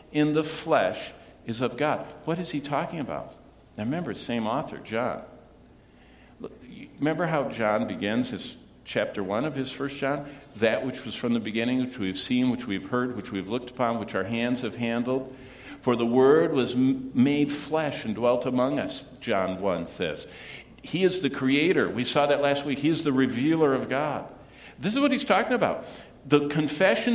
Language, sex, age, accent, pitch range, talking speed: English, male, 50-69, American, 115-160 Hz, 185 wpm